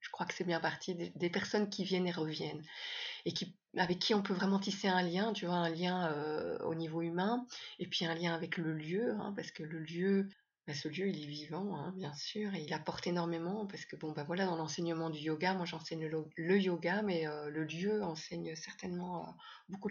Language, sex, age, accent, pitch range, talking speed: French, female, 30-49, French, 175-205 Hz, 230 wpm